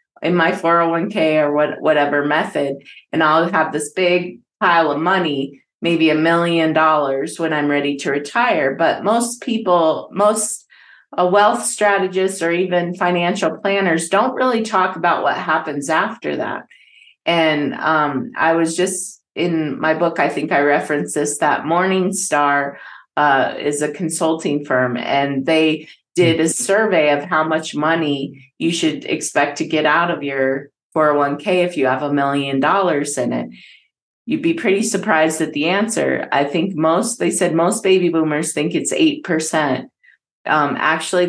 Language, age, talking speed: English, 30-49, 155 wpm